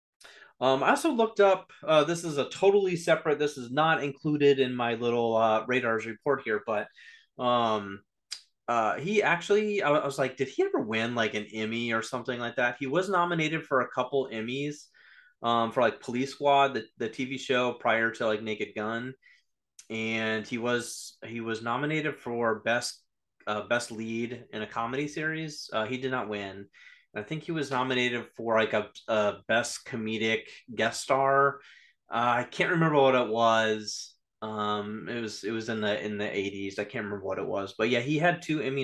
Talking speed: 195 wpm